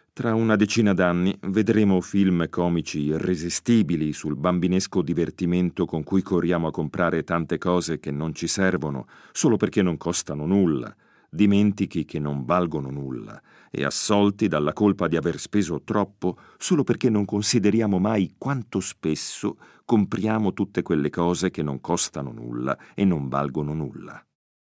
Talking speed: 145 wpm